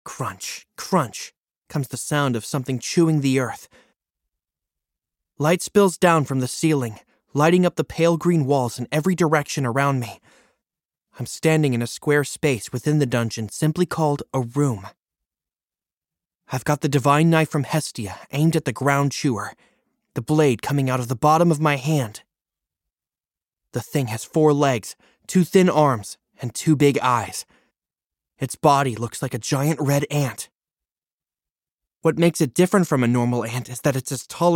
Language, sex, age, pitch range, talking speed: English, male, 20-39, 125-155 Hz, 165 wpm